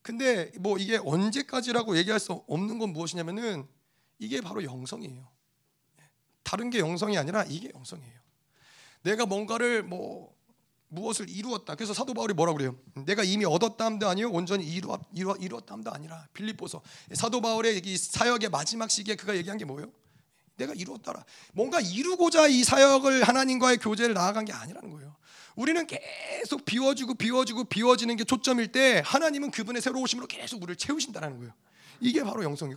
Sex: male